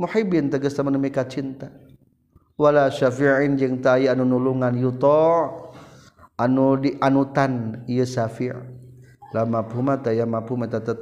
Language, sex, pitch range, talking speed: Indonesian, male, 115-135 Hz, 115 wpm